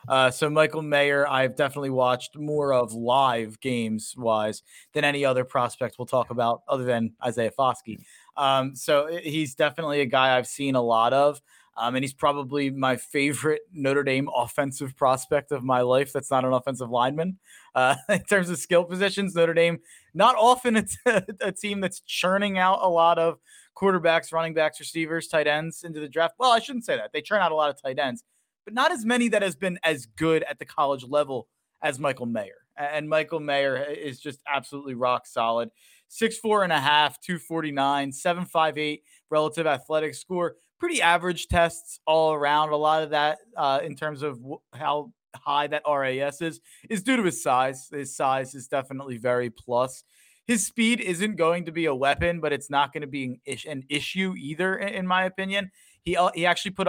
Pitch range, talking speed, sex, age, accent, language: 135-170 Hz, 195 wpm, male, 20-39, American, English